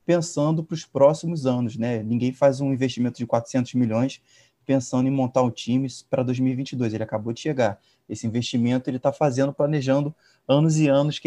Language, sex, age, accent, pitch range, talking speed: Portuguese, male, 20-39, Brazilian, 120-140 Hz, 185 wpm